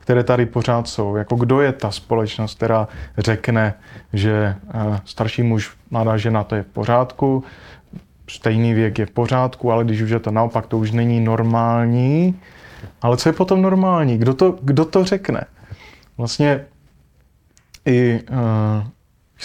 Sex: male